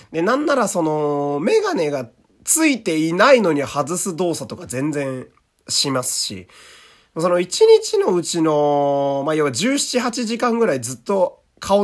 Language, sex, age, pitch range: Japanese, male, 30-49, 130-210 Hz